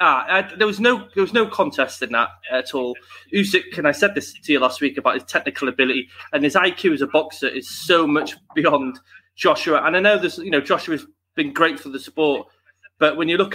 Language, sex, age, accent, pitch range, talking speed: English, male, 20-39, British, 135-185 Hz, 240 wpm